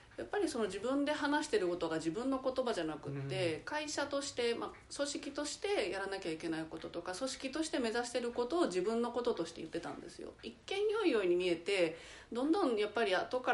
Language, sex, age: Japanese, female, 30-49